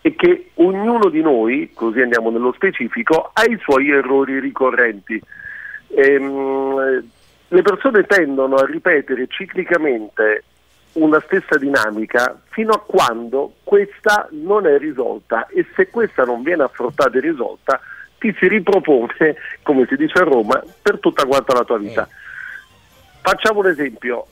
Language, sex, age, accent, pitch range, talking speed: Italian, male, 50-69, native, 135-225 Hz, 140 wpm